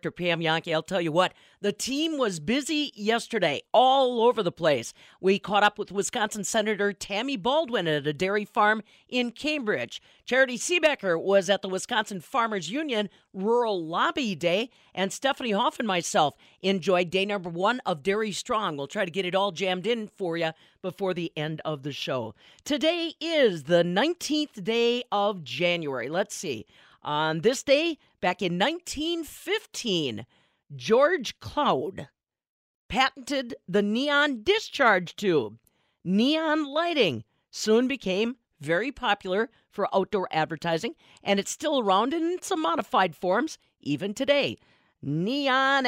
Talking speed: 145 wpm